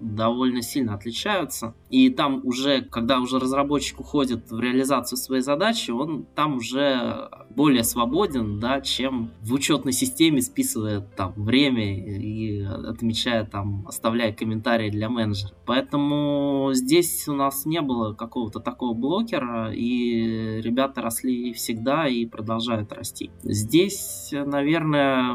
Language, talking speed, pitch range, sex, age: Russian, 120 wpm, 110-135 Hz, male, 20-39